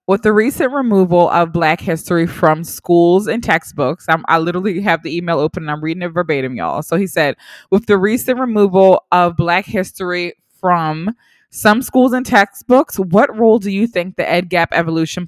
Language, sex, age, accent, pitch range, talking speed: English, female, 20-39, American, 165-220 Hz, 185 wpm